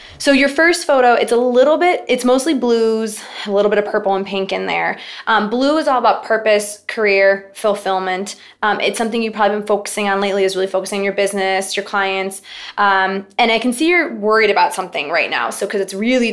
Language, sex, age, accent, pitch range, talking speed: English, female, 20-39, American, 195-225 Hz, 220 wpm